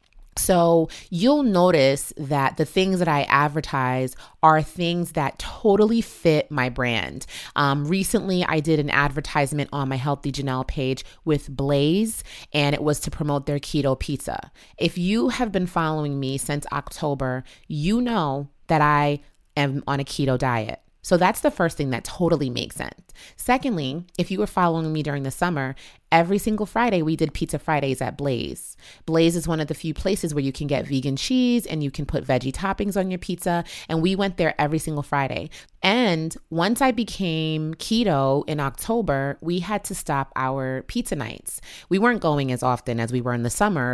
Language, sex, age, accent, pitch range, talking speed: English, female, 30-49, American, 140-185 Hz, 185 wpm